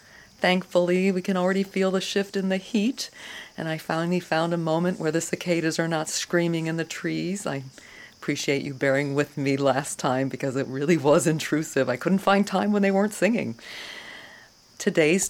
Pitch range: 135-185 Hz